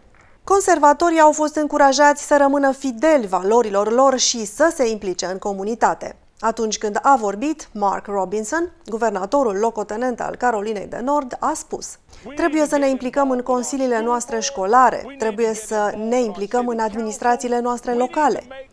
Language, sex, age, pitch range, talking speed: Romanian, female, 30-49, 210-275 Hz, 145 wpm